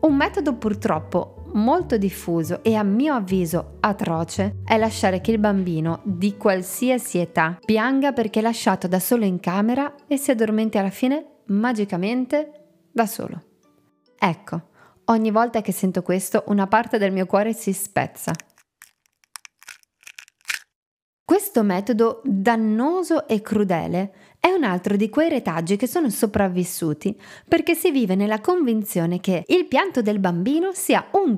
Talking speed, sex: 140 wpm, female